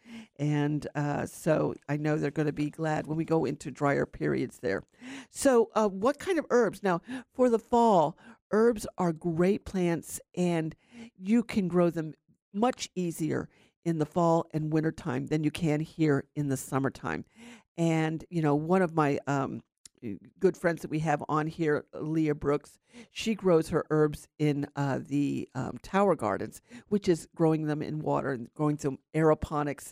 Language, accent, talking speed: English, American, 175 wpm